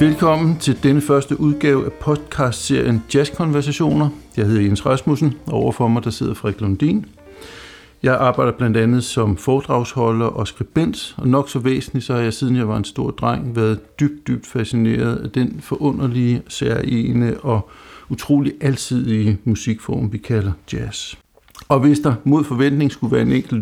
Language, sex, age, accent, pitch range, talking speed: Danish, male, 60-79, native, 110-140 Hz, 165 wpm